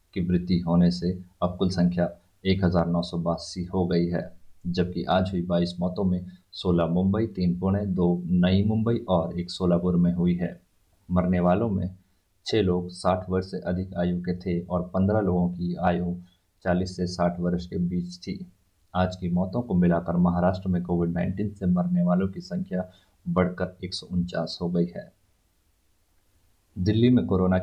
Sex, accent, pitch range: male, native, 90-95 Hz